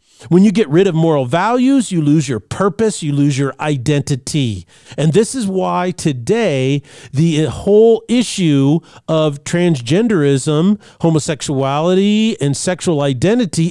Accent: American